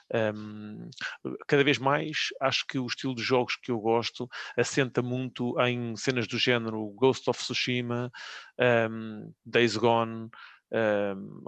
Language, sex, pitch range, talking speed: English, male, 115-130 Hz, 135 wpm